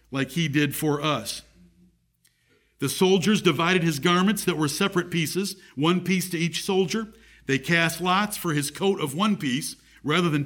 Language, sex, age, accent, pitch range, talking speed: English, male, 50-69, American, 130-190 Hz, 170 wpm